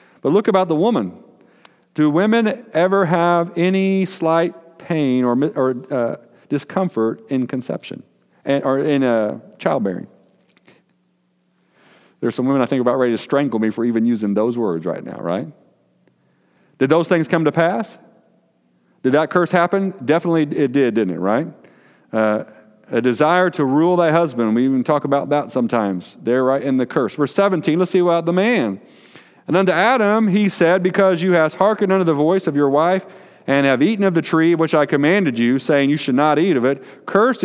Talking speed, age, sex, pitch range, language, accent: 185 wpm, 40-59, male, 120-170 Hz, English, American